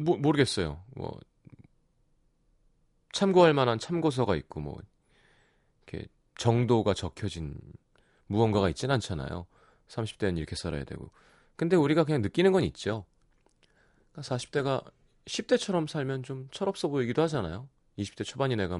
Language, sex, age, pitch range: Korean, male, 30-49, 90-145 Hz